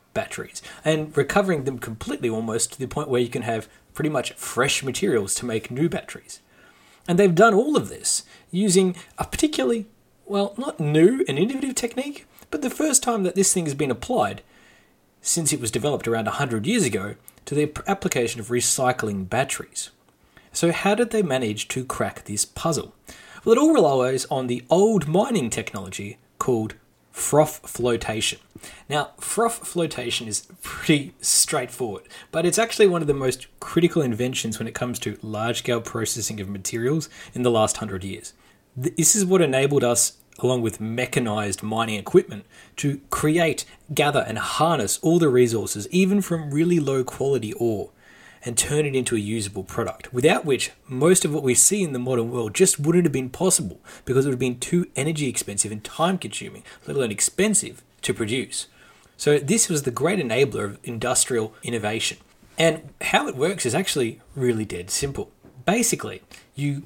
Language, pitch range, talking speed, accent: English, 115-175 Hz, 170 wpm, Australian